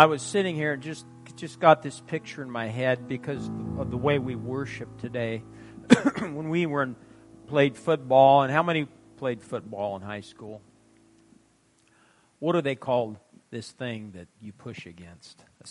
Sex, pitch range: male, 110-155 Hz